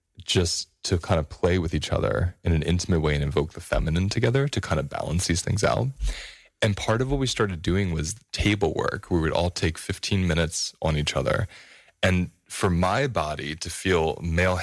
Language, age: English, 20-39